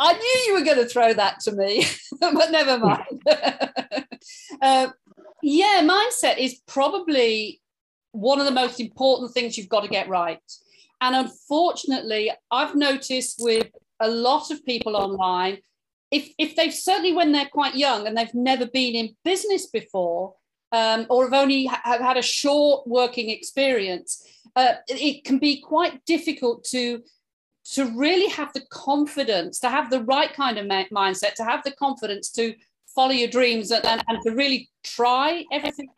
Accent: British